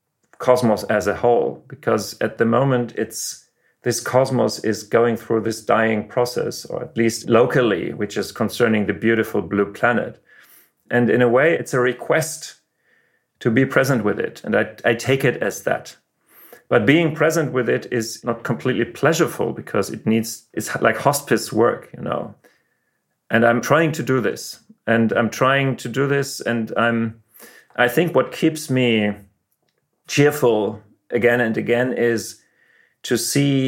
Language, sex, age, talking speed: English, male, 40-59, 160 wpm